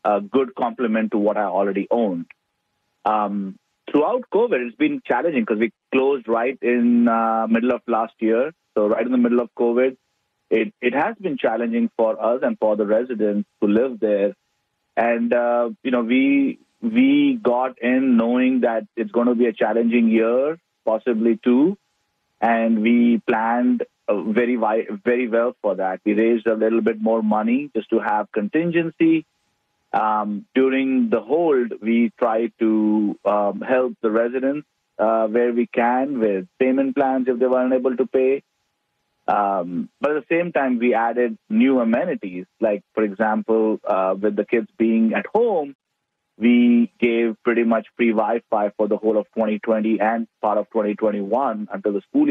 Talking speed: 165 wpm